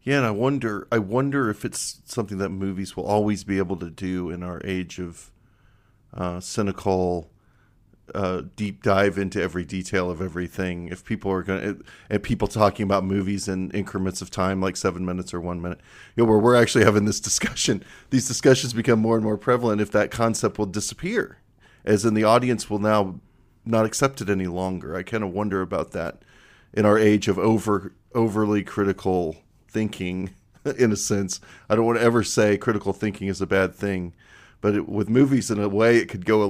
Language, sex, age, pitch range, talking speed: English, male, 40-59, 95-115 Hz, 195 wpm